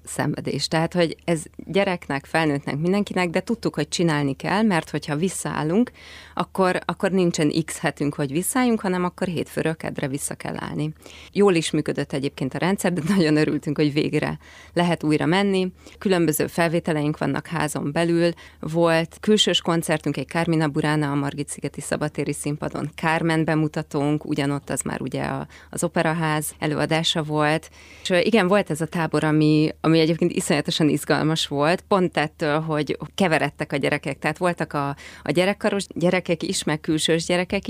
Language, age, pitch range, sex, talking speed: Hungarian, 30-49, 150-175 Hz, female, 155 wpm